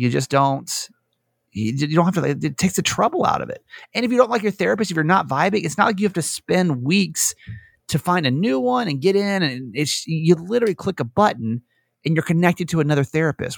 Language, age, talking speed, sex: English, 30-49, 240 wpm, male